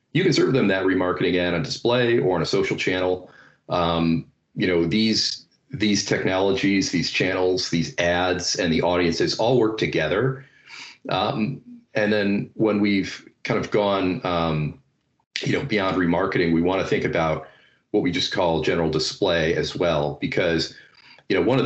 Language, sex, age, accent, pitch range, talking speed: English, male, 40-59, American, 85-100 Hz, 170 wpm